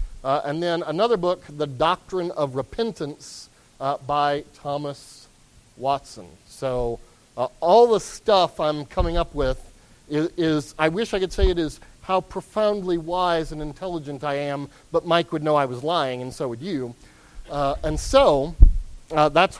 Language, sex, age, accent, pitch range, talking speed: English, male, 40-59, American, 130-180 Hz, 165 wpm